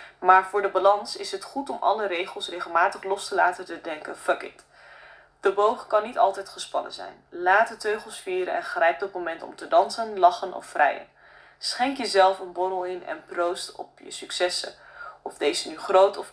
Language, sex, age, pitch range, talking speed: Dutch, female, 20-39, 185-245 Hz, 200 wpm